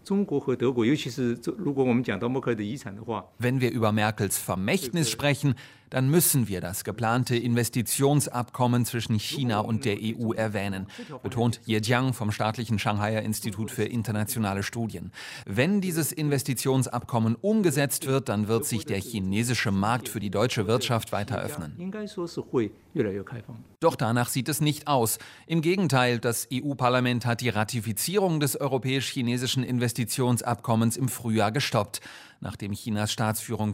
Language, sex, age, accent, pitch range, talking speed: German, male, 30-49, German, 110-130 Hz, 120 wpm